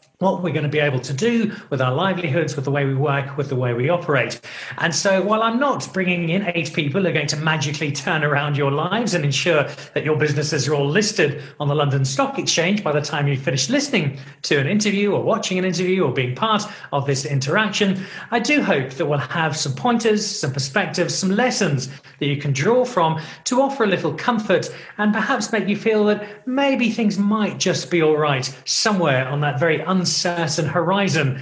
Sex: male